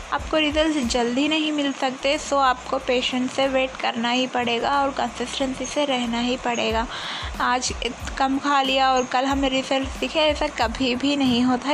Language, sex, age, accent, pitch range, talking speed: Hindi, female, 20-39, native, 250-285 Hz, 180 wpm